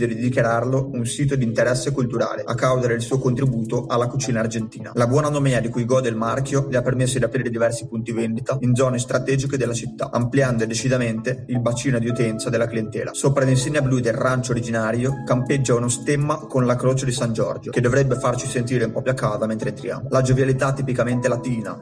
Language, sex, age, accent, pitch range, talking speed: Italian, male, 30-49, native, 120-135 Hz, 205 wpm